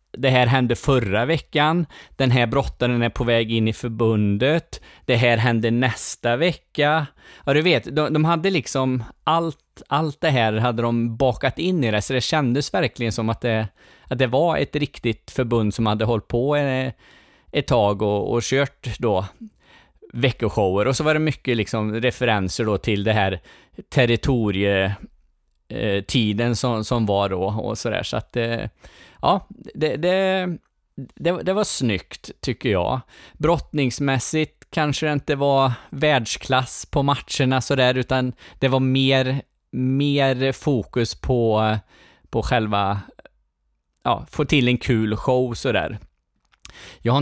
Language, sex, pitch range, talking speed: Swedish, male, 110-140 Hz, 145 wpm